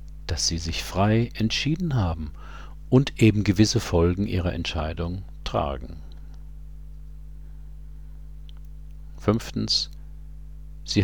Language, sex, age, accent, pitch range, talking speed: German, male, 50-69, German, 75-105 Hz, 80 wpm